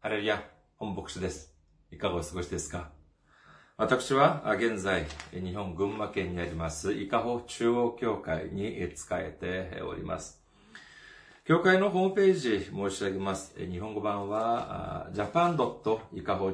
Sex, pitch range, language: male, 90-120 Hz, Japanese